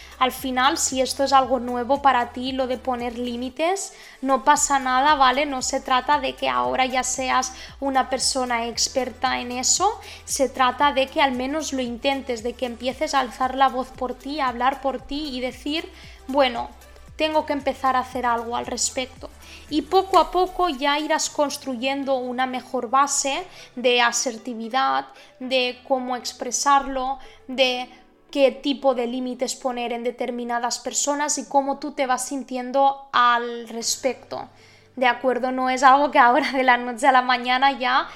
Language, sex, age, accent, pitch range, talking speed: Spanish, female, 20-39, Spanish, 250-275 Hz, 170 wpm